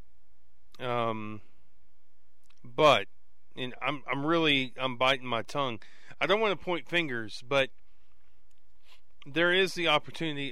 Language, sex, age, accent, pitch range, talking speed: English, male, 40-59, American, 110-170 Hz, 120 wpm